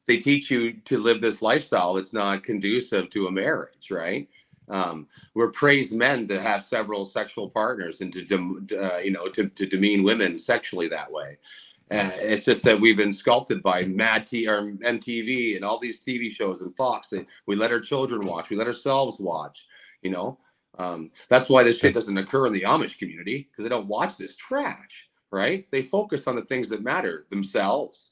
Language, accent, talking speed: English, American, 195 wpm